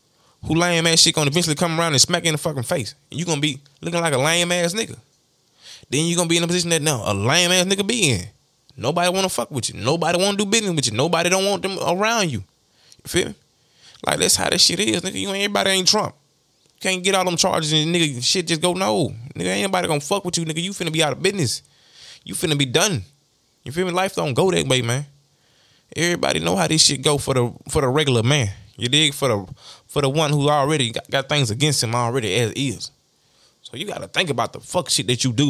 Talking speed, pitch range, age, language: 250 wpm, 125-170 Hz, 20-39, English